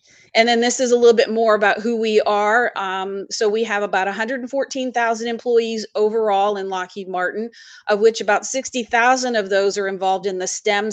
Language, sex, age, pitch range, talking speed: English, female, 30-49, 195-245 Hz, 185 wpm